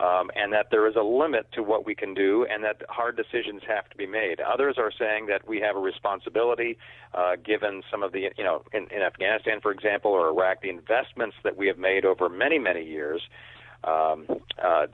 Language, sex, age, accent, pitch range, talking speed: English, male, 50-69, American, 95-130 Hz, 215 wpm